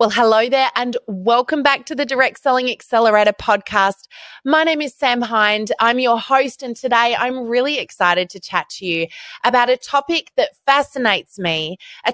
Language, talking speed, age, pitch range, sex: English, 180 wpm, 20-39, 200-285 Hz, female